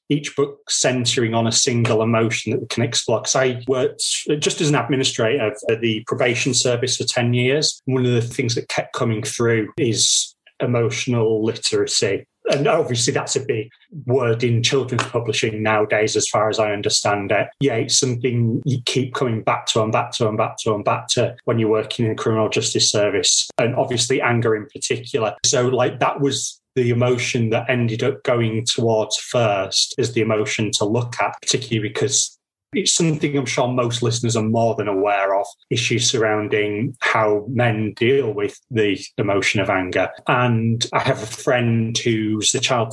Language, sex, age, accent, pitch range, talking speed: English, male, 30-49, British, 110-130 Hz, 185 wpm